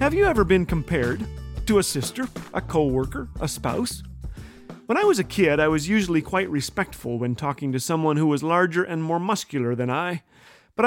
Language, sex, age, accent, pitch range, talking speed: English, male, 40-59, American, 140-215 Hz, 195 wpm